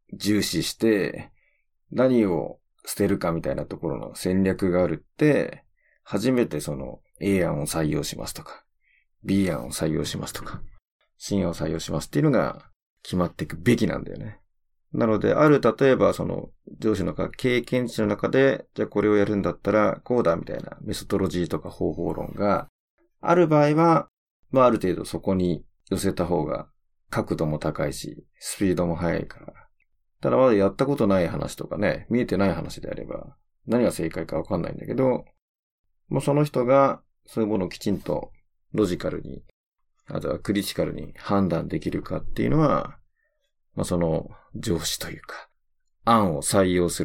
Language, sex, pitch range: Japanese, male, 90-125 Hz